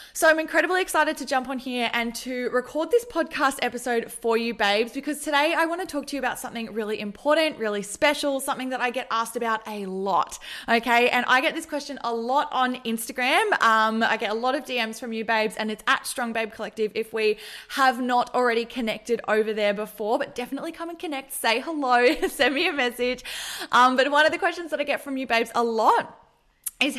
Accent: Australian